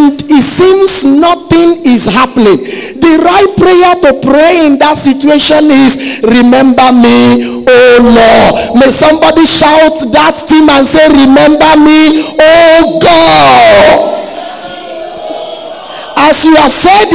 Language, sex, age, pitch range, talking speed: English, male, 50-69, 270-330 Hz, 110 wpm